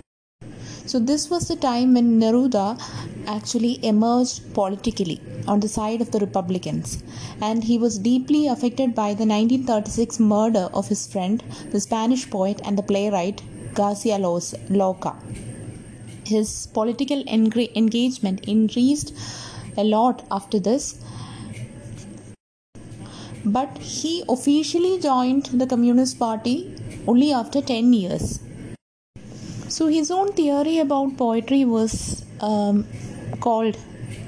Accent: Indian